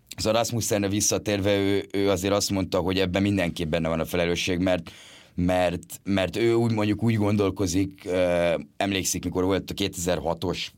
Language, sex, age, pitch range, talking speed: Hungarian, male, 30-49, 90-100 Hz, 165 wpm